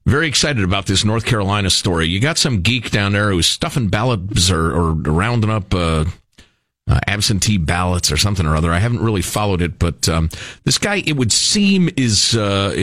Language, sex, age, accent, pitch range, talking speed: English, male, 40-59, American, 95-135 Hz, 195 wpm